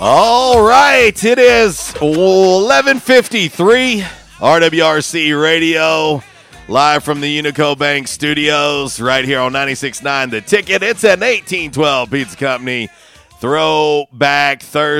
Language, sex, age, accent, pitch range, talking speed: English, male, 40-59, American, 105-140 Hz, 105 wpm